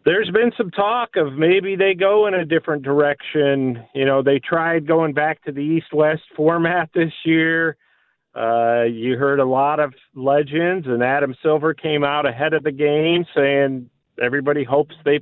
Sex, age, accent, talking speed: male, 40-59, American, 175 wpm